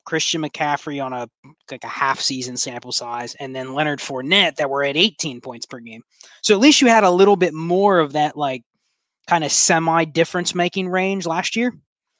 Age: 20-39